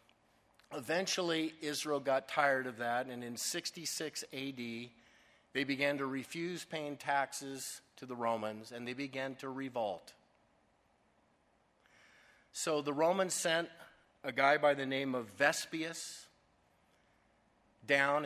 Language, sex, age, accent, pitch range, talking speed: English, male, 50-69, American, 125-150 Hz, 120 wpm